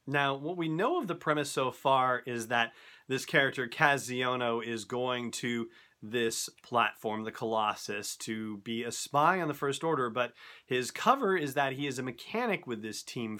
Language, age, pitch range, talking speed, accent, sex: English, 30-49, 115-140 Hz, 185 wpm, American, male